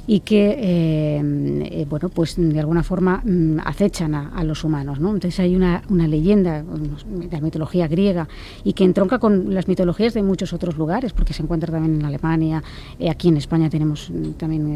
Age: 30-49